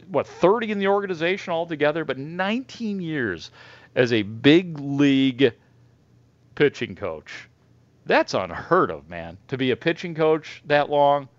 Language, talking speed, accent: English, 135 wpm, American